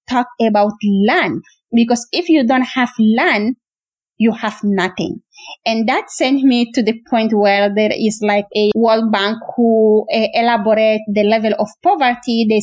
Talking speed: 160 wpm